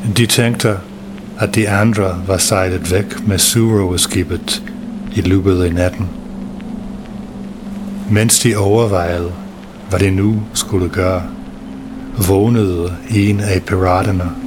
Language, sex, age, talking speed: English, male, 60-79, 110 wpm